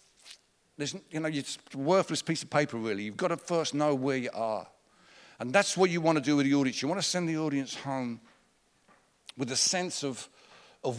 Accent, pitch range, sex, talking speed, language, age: British, 130-170 Hz, male, 215 wpm, English, 50-69